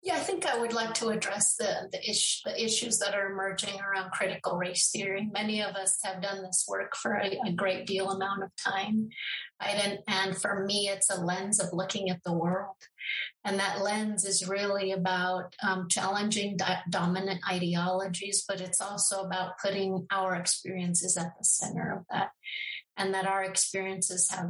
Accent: American